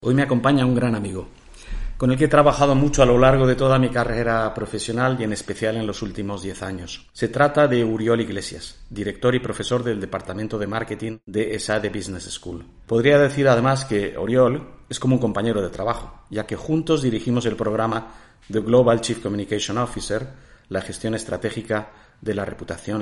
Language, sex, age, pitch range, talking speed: Spanish, male, 40-59, 105-125 Hz, 190 wpm